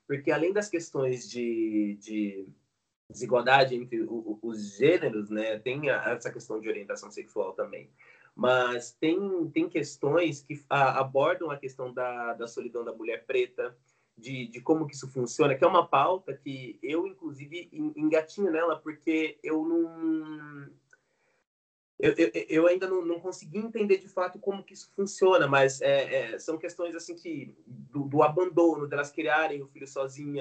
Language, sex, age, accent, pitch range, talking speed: Portuguese, male, 20-39, Brazilian, 130-185 Hz, 155 wpm